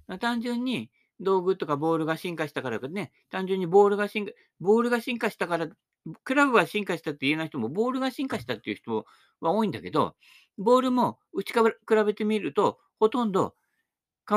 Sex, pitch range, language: male, 150-210 Hz, Japanese